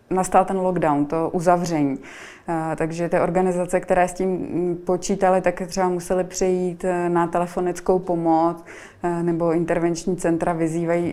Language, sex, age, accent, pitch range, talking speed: Czech, female, 20-39, native, 175-185 Hz, 125 wpm